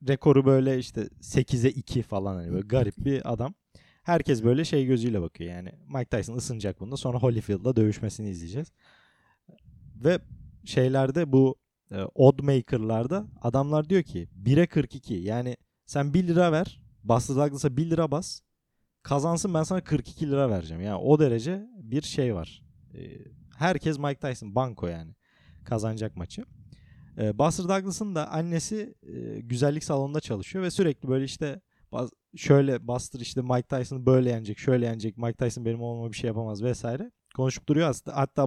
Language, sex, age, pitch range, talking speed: Turkish, male, 30-49, 110-150 Hz, 150 wpm